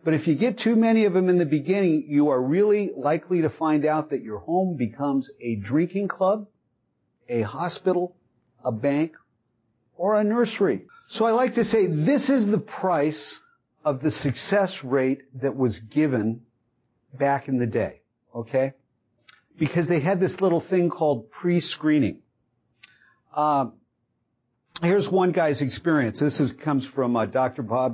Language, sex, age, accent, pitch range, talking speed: English, male, 50-69, American, 135-195 Hz, 150 wpm